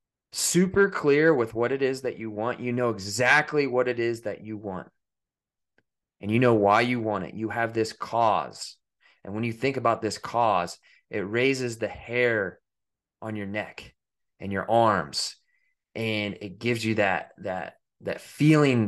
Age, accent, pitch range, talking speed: 20-39, American, 105-125 Hz, 170 wpm